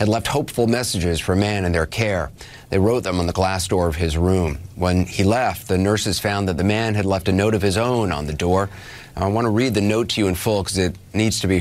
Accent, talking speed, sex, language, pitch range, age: American, 270 wpm, male, English, 95-110 Hz, 30-49